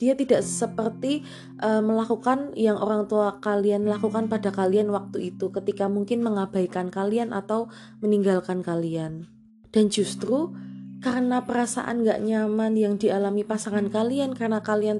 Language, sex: Indonesian, female